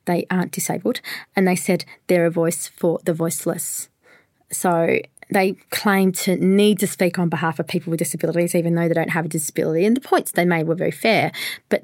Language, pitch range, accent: English, 165-190 Hz, Australian